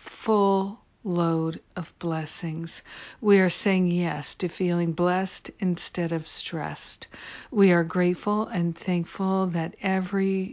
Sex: female